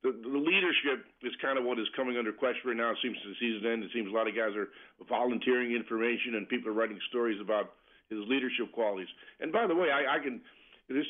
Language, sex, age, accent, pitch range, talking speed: English, male, 50-69, American, 120-160 Hz, 245 wpm